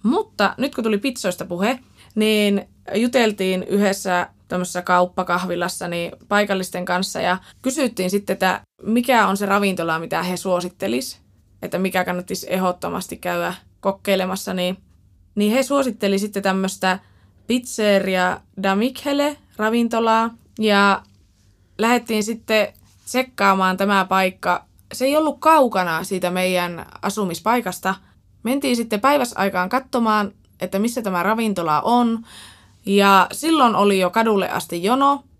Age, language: 20-39, Finnish